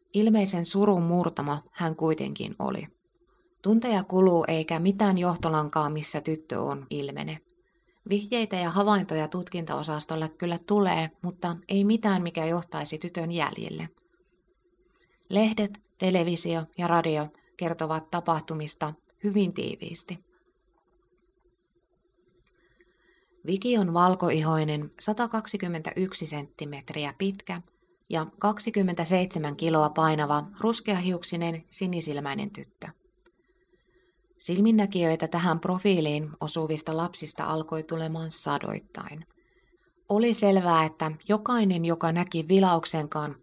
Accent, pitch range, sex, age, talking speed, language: native, 160-205 Hz, female, 20-39, 90 wpm, Finnish